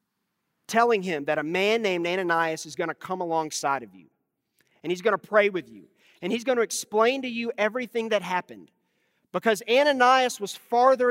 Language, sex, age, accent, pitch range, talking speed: English, male, 40-59, American, 165-220 Hz, 190 wpm